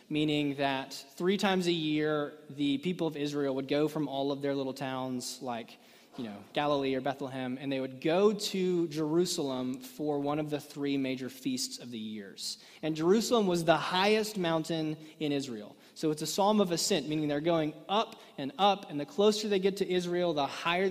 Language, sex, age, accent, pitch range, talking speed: English, male, 20-39, American, 135-175 Hz, 200 wpm